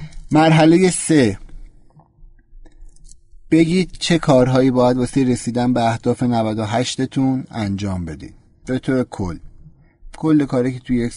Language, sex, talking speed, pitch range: Persian, male, 115 wpm, 115-145 Hz